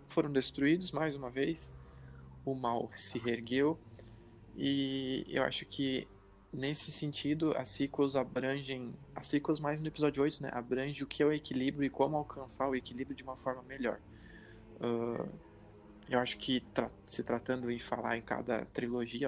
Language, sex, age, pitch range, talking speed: Portuguese, male, 20-39, 115-135 Hz, 160 wpm